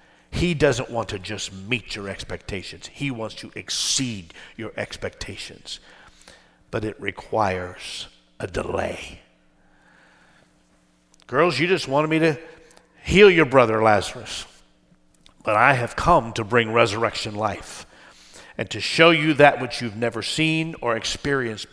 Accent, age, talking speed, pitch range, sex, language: American, 50-69, 135 wpm, 110-155 Hz, male, English